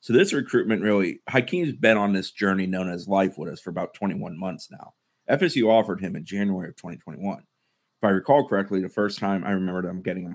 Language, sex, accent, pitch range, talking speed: English, male, American, 90-100 Hz, 220 wpm